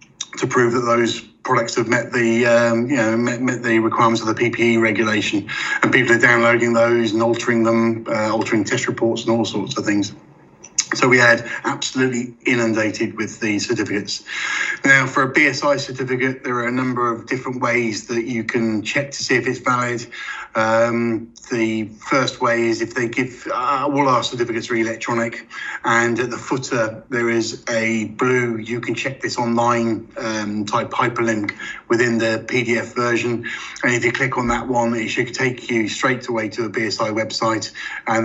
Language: English